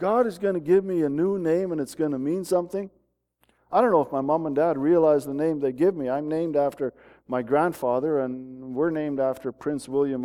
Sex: male